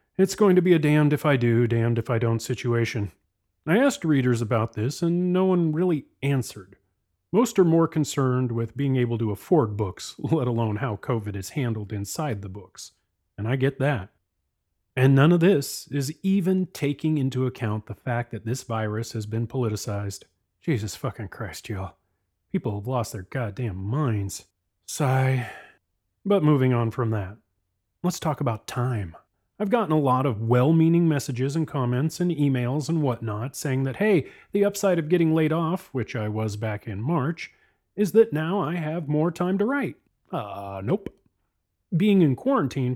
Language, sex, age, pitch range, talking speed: English, male, 30-49, 110-155 Hz, 175 wpm